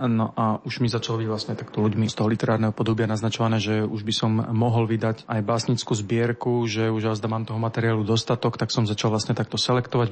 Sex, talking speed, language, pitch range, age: male, 210 wpm, Slovak, 110-120 Hz, 30-49